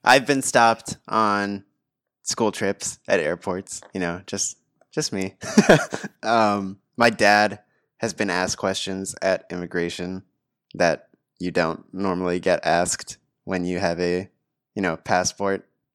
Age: 20-39